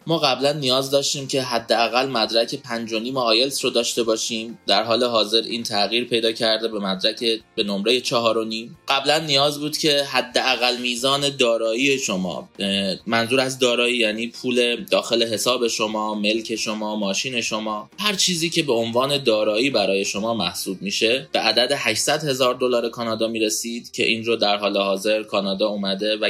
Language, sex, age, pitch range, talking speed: Persian, male, 20-39, 110-130 Hz, 165 wpm